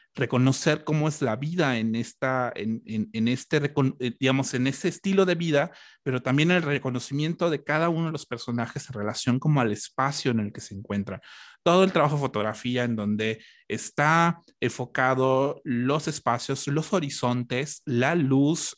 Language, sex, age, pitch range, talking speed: Spanish, male, 30-49, 120-155 Hz, 165 wpm